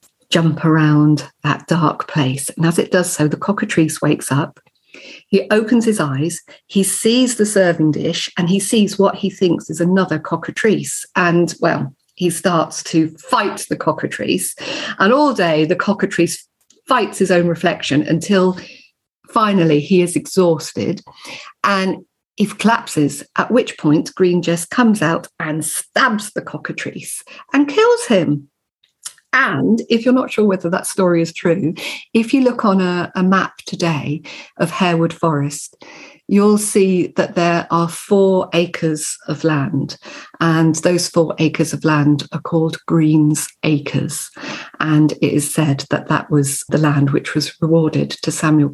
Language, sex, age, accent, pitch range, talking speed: English, female, 50-69, British, 160-210 Hz, 155 wpm